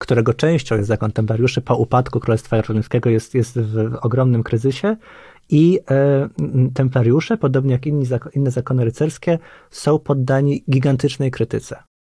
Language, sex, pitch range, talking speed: Polish, male, 115-140 Hz, 140 wpm